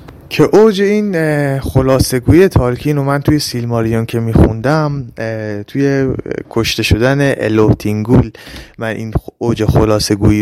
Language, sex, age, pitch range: Persian, male, 20-39, 115-160 Hz